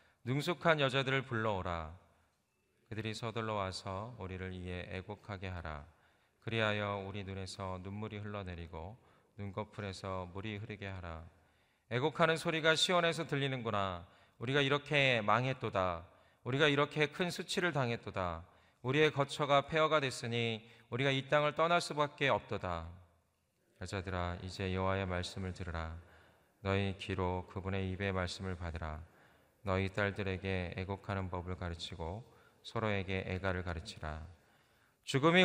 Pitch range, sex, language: 90-125 Hz, male, Korean